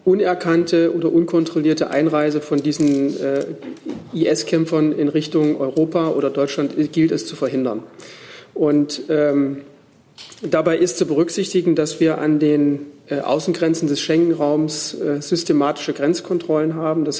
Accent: German